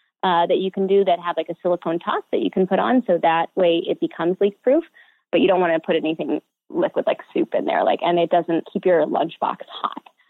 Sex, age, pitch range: female, 20-39, 175-210 Hz